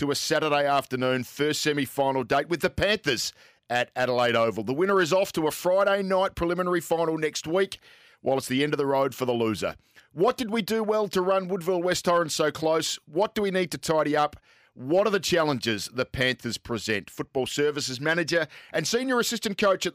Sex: male